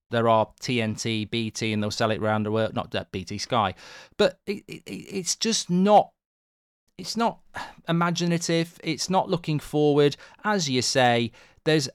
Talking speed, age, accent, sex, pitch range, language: 155 wpm, 30-49, British, male, 110-180 Hz, English